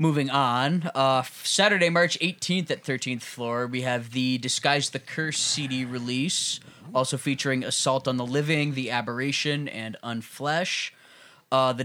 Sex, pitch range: male, 115-135 Hz